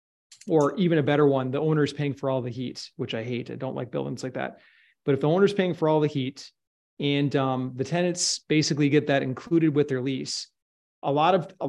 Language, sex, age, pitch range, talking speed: English, male, 30-49, 135-160 Hz, 230 wpm